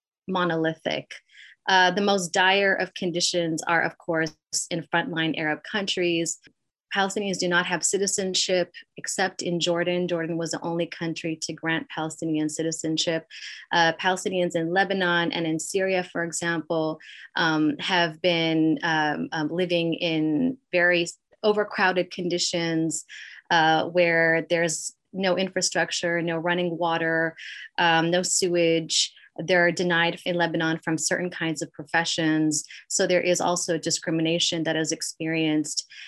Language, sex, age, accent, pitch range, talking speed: English, female, 30-49, American, 165-180 Hz, 130 wpm